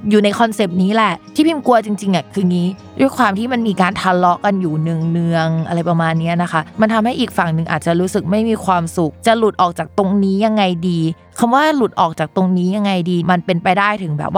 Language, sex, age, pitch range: Thai, female, 20-39, 165-205 Hz